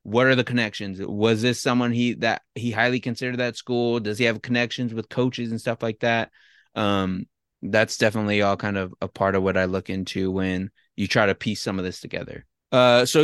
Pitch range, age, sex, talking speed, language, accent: 105-130 Hz, 20-39, male, 220 wpm, English, American